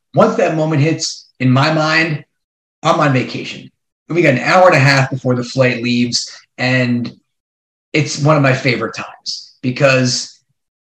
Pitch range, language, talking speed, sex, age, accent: 130-150 Hz, English, 160 wpm, male, 30-49, American